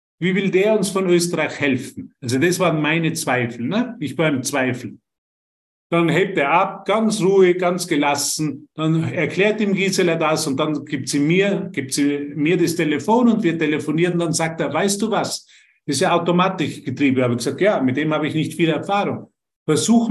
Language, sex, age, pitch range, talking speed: German, male, 50-69, 155-205 Hz, 190 wpm